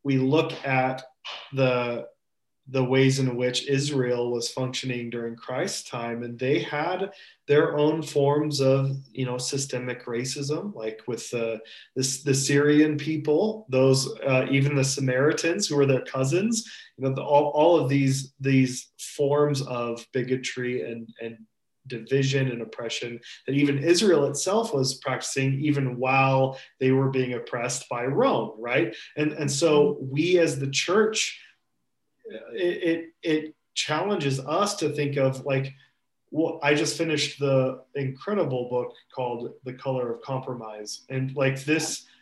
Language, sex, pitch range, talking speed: English, male, 125-150 Hz, 145 wpm